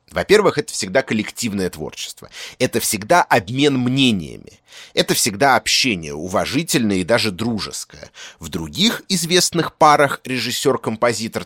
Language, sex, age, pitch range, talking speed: Russian, male, 30-49, 100-140 Hz, 110 wpm